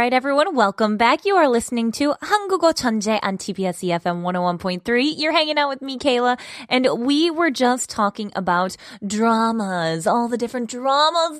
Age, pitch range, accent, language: 20-39, 215-340 Hz, American, Korean